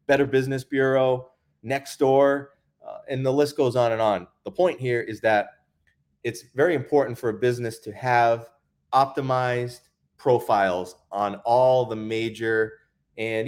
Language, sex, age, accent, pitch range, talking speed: English, male, 30-49, American, 105-135 Hz, 145 wpm